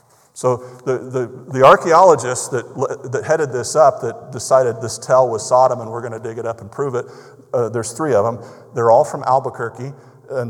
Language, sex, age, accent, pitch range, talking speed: English, male, 50-69, American, 105-130 Hz, 205 wpm